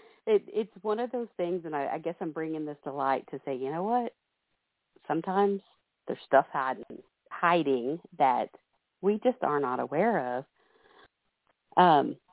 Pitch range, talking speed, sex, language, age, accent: 140-215 Hz, 155 wpm, female, English, 40-59, American